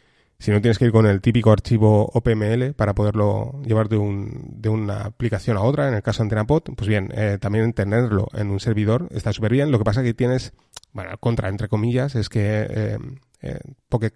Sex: male